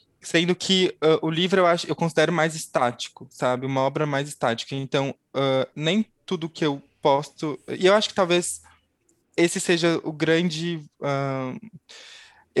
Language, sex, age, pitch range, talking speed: Portuguese, male, 20-39, 135-165 Hz, 155 wpm